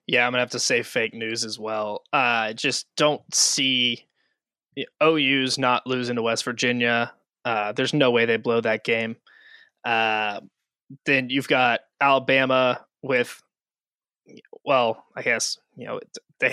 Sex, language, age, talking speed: male, English, 20-39, 145 wpm